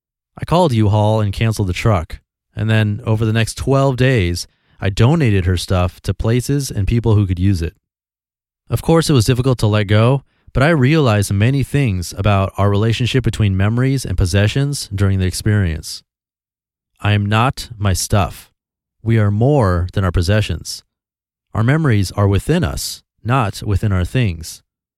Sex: male